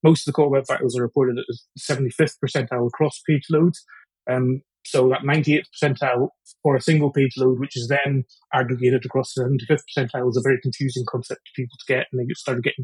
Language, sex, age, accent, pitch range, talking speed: English, male, 30-49, British, 130-165 Hz, 215 wpm